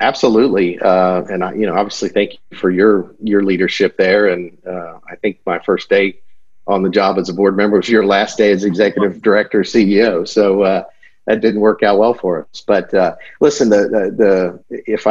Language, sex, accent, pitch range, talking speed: English, male, American, 85-100 Hz, 205 wpm